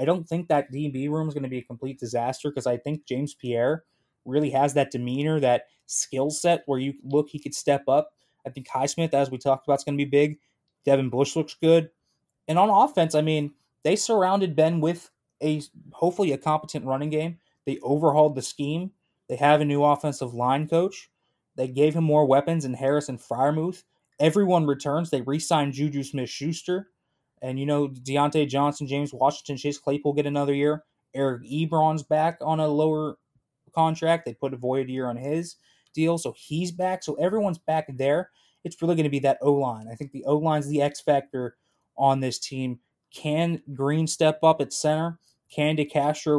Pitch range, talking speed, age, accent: 135-155 Hz, 190 wpm, 20-39, American